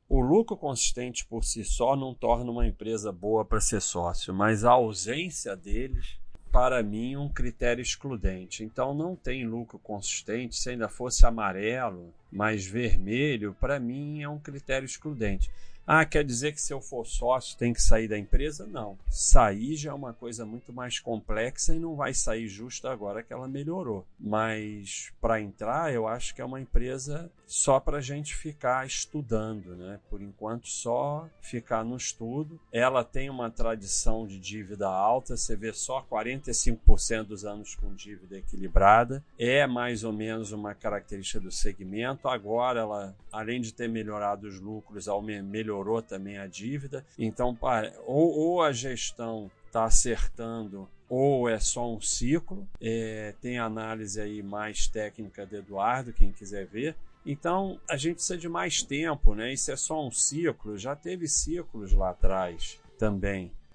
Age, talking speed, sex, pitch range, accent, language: 40-59, 160 wpm, male, 105-130 Hz, Brazilian, Portuguese